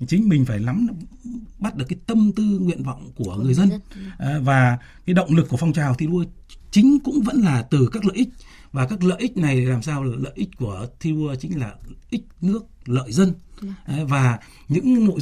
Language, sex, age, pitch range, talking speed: Vietnamese, male, 60-79, 130-190 Hz, 210 wpm